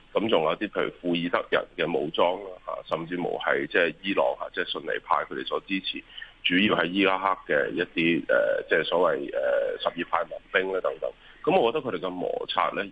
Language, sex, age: Chinese, male, 30-49